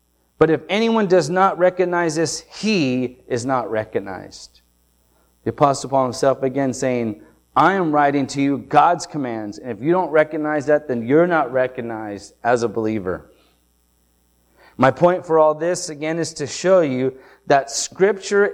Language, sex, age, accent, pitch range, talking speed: English, male, 30-49, American, 130-185 Hz, 160 wpm